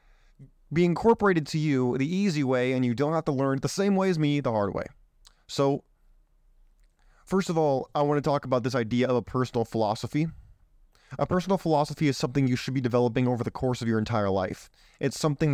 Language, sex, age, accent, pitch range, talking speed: English, male, 20-39, American, 120-145 Hz, 210 wpm